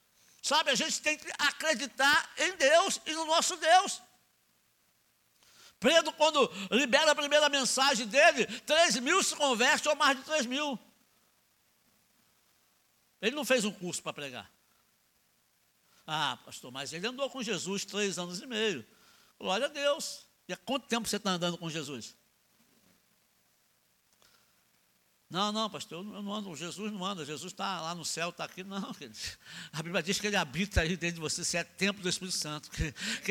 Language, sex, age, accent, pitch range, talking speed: Portuguese, male, 60-79, Brazilian, 200-290 Hz, 170 wpm